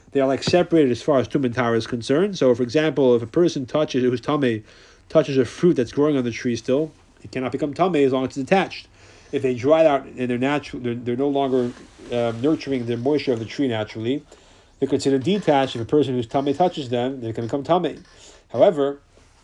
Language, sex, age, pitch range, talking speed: English, male, 30-49, 115-145 Hz, 220 wpm